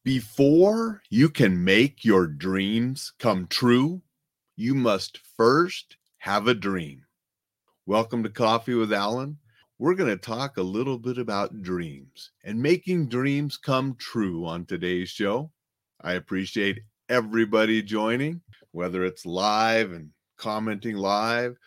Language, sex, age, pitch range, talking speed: English, male, 40-59, 100-140 Hz, 125 wpm